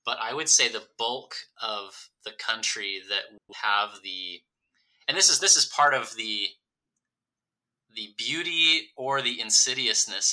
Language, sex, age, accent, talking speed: English, male, 20-39, American, 145 wpm